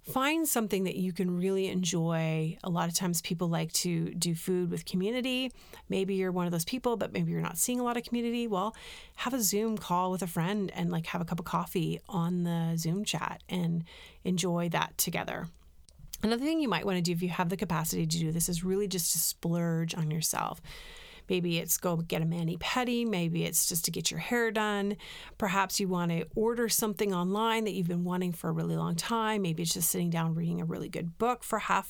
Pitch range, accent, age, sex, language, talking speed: 170-205 Hz, American, 30-49, female, English, 225 wpm